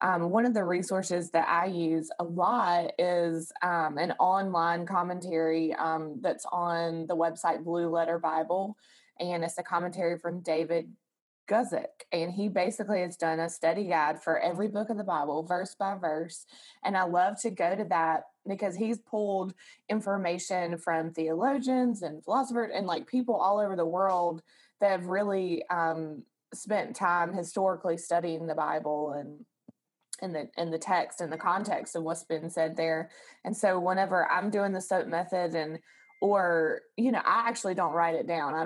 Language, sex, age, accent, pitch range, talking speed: English, female, 20-39, American, 165-190 Hz, 170 wpm